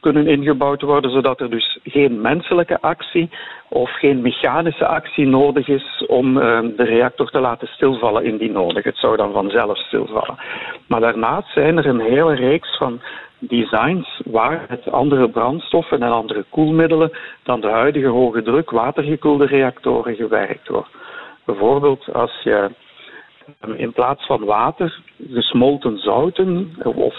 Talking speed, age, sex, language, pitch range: 140 wpm, 50-69, male, Dutch, 120-160 Hz